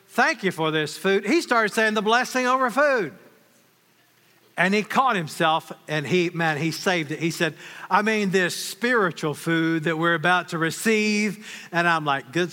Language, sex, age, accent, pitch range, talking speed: English, male, 50-69, American, 160-225 Hz, 180 wpm